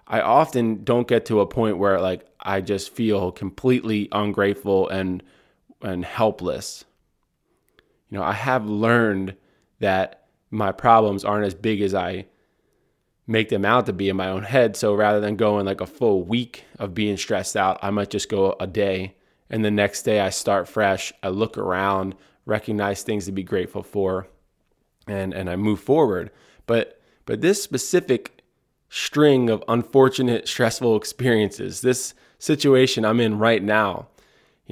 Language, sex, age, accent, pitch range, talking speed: English, male, 20-39, American, 100-120 Hz, 160 wpm